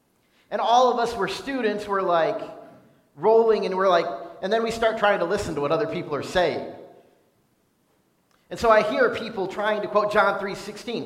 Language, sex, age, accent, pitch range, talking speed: English, male, 40-59, American, 155-230 Hz, 195 wpm